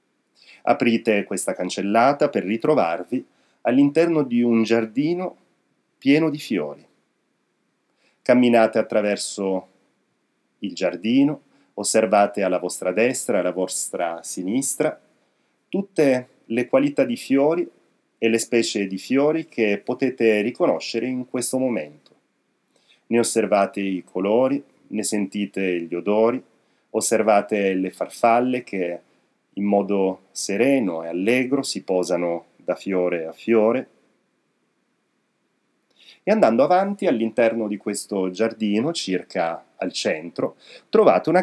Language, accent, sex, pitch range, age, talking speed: Italian, native, male, 95-130 Hz, 40-59, 105 wpm